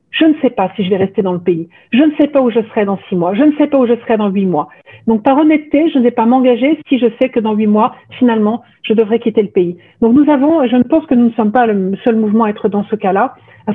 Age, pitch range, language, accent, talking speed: 50-69, 205-255 Hz, French, French, 320 wpm